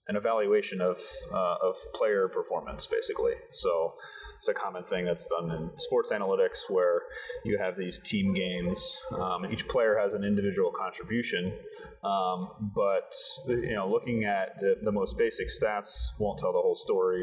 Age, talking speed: 30-49, 165 wpm